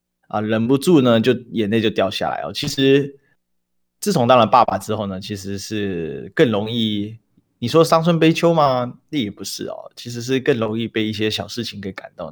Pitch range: 105-140 Hz